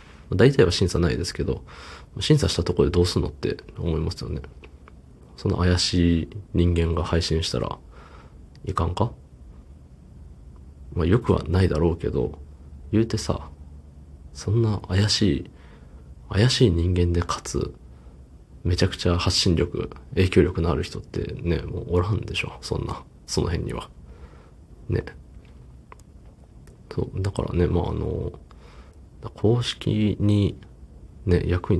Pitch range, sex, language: 70-95 Hz, male, Japanese